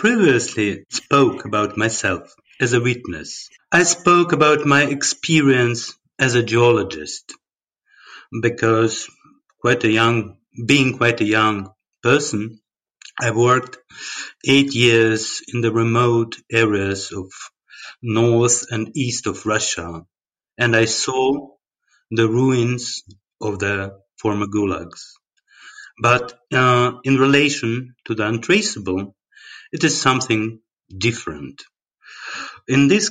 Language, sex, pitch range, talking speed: English, male, 110-135 Hz, 110 wpm